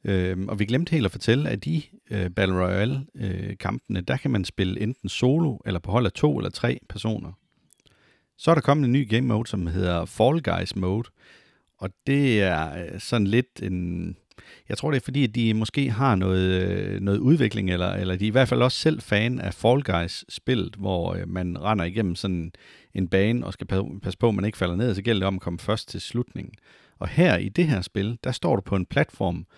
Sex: male